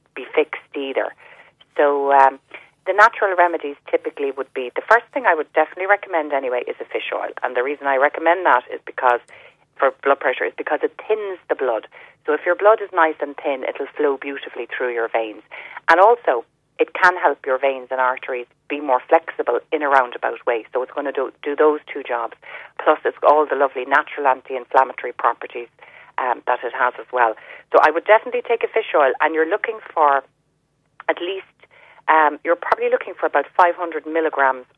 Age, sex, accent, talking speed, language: 30-49, female, Irish, 200 wpm, English